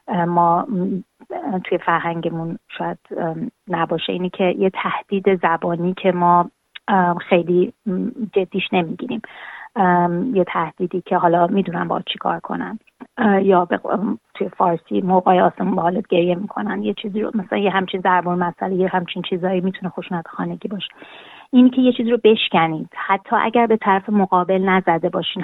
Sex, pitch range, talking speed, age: female, 175-195 Hz, 140 wpm, 30-49